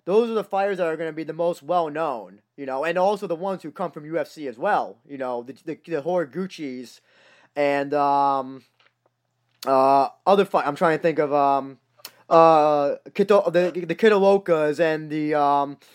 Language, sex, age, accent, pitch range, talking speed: English, male, 20-39, American, 145-195 Hz, 185 wpm